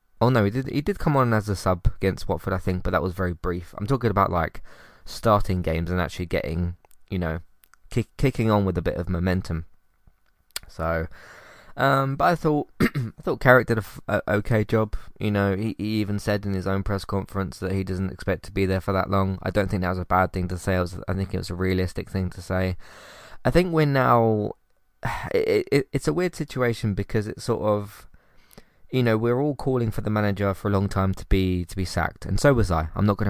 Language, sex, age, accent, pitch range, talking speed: English, male, 20-39, British, 90-110 Hz, 240 wpm